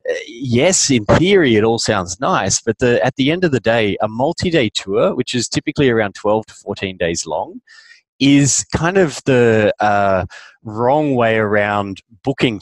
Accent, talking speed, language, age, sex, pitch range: Australian, 170 wpm, English, 30-49, male, 100-135 Hz